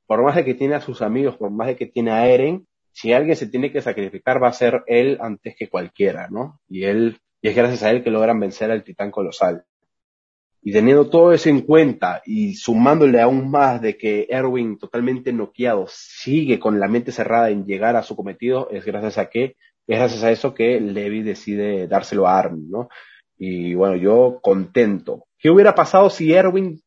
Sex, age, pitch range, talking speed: male, 30-49, 110-150 Hz, 205 wpm